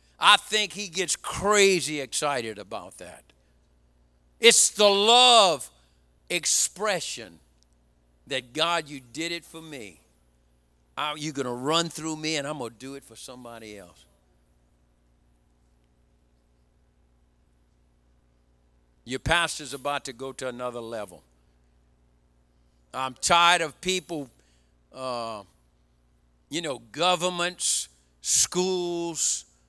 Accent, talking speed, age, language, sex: American, 105 wpm, 50-69, English, male